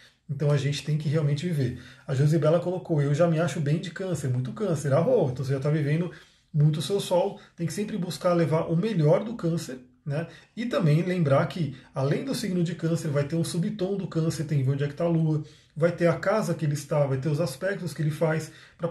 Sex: male